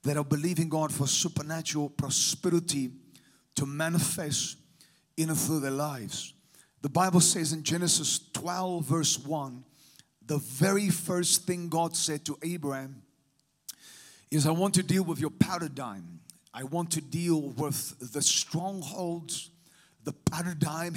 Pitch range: 150-185 Hz